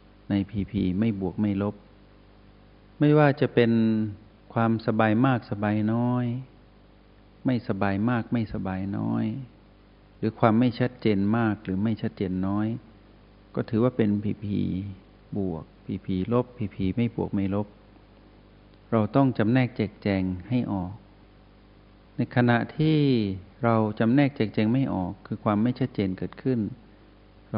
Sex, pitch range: male, 100-115 Hz